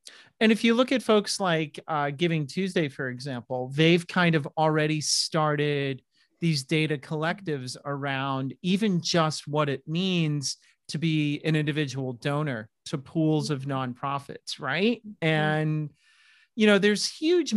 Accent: American